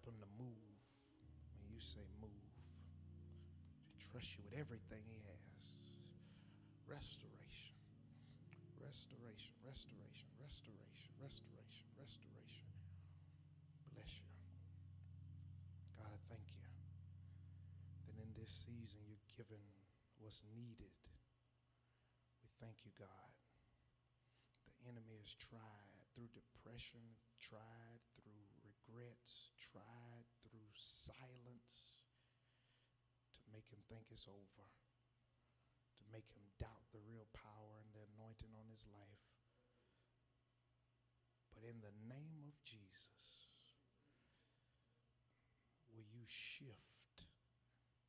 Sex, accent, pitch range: male, American, 100-120 Hz